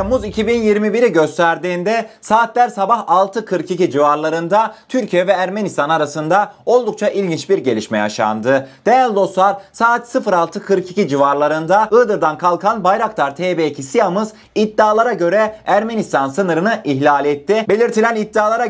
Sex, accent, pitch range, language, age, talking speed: male, native, 150-205 Hz, Turkish, 30-49, 110 wpm